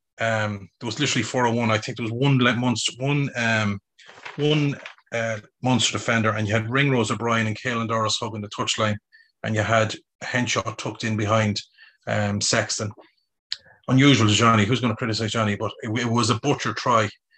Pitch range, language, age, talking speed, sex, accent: 110-130 Hz, English, 30-49, 180 wpm, male, Irish